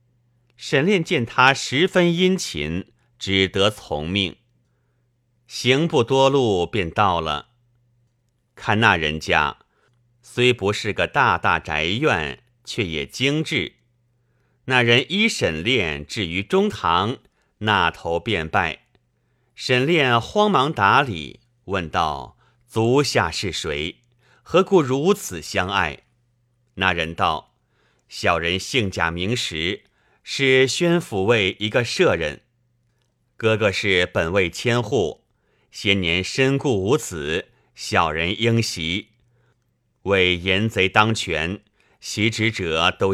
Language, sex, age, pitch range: Chinese, male, 50-69, 95-125 Hz